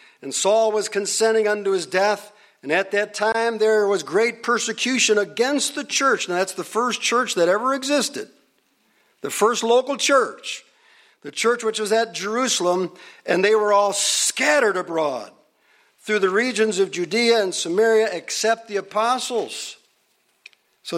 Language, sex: English, male